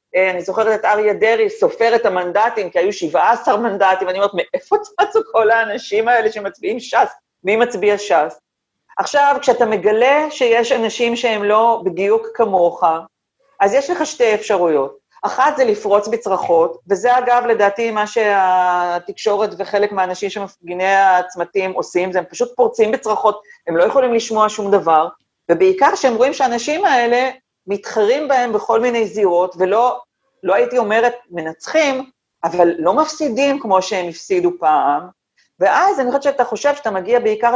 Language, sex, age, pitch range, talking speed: Hebrew, female, 40-59, 195-250 Hz, 145 wpm